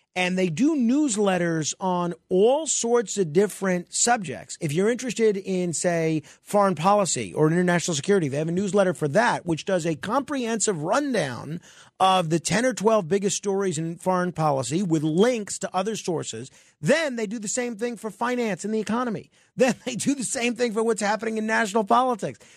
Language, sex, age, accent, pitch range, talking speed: English, male, 40-59, American, 170-235 Hz, 185 wpm